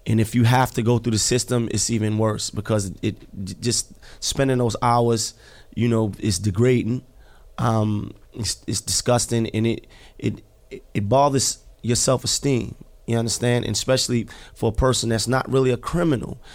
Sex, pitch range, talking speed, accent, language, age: male, 115-130 Hz, 170 wpm, American, English, 30-49